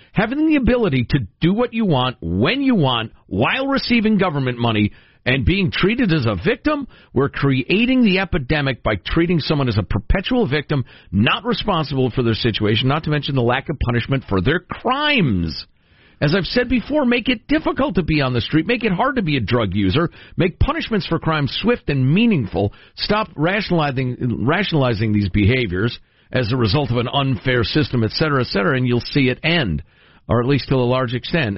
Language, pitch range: English, 115-180 Hz